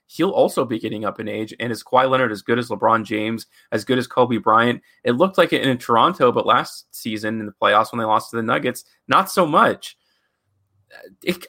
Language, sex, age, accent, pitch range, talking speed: English, male, 30-49, American, 110-140 Hz, 225 wpm